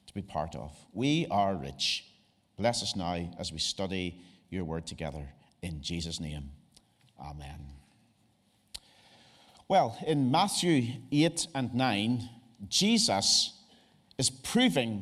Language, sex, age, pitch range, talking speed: English, male, 50-69, 115-170 Hz, 110 wpm